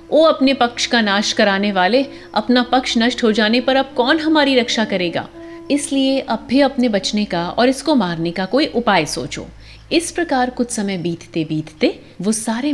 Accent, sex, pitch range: native, female, 185-270 Hz